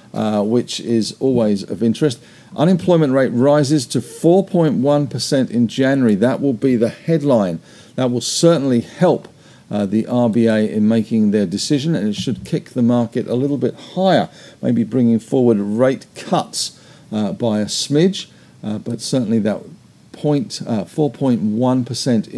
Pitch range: 115-150 Hz